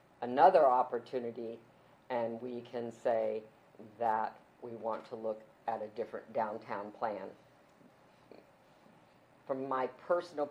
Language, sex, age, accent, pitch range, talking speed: English, female, 50-69, American, 115-135 Hz, 110 wpm